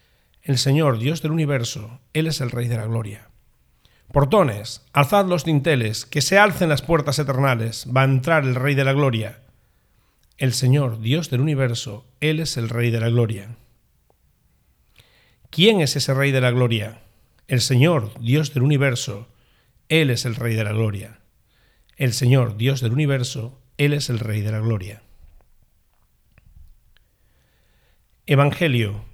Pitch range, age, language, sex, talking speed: 120-150 Hz, 40-59, Spanish, male, 150 wpm